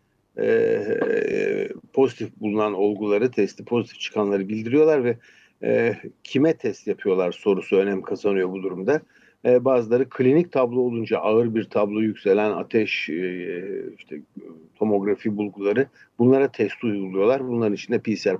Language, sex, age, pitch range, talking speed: Turkish, male, 60-79, 100-130 Hz, 125 wpm